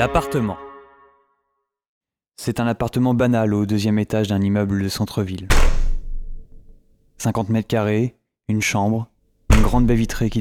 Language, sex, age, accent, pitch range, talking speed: French, male, 20-39, French, 100-120 Hz, 125 wpm